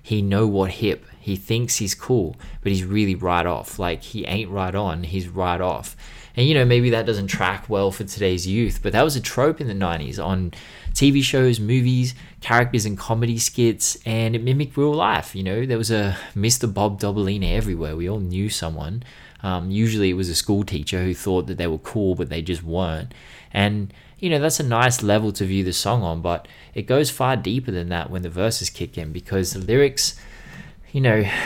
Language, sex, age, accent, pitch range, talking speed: English, male, 20-39, Australian, 90-115 Hz, 215 wpm